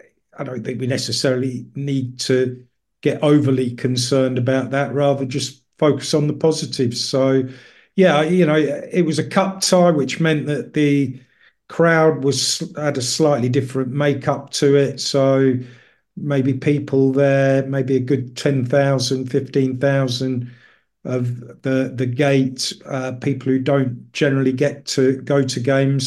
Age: 50-69